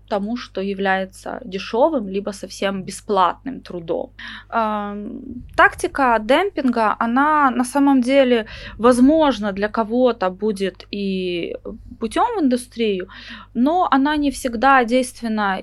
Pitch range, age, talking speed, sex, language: 200-255 Hz, 20-39, 105 wpm, female, Russian